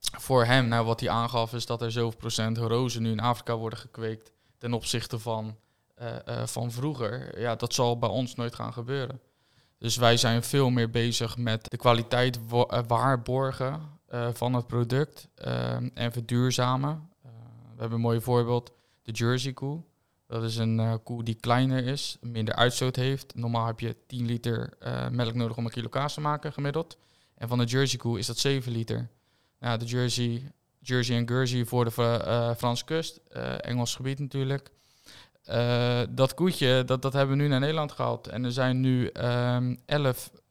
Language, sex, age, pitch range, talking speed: Dutch, male, 20-39, 115-130 Hz, 190 wpm